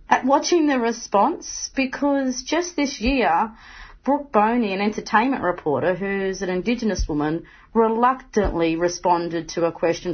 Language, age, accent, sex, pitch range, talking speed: English, 30-49, Australian, female, 175-245 Hz, 130 wpm